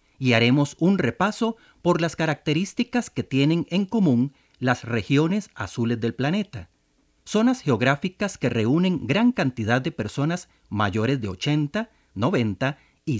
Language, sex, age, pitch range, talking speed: Spanish, male, 40-59, 115-175 Hz, 130 wpm